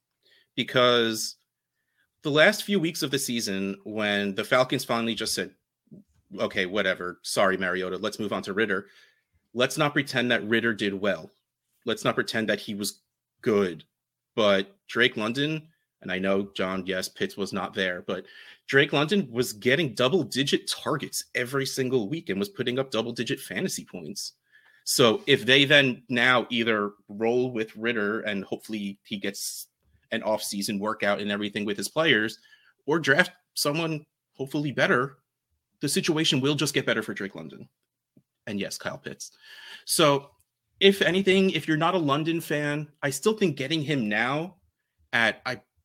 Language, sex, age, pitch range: English, male, 30-49, 105-150 Hz